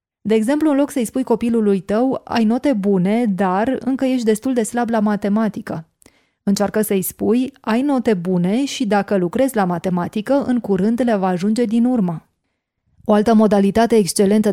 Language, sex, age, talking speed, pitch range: Hungarian, female, 20-39, 170 wpm, 190-225 Hz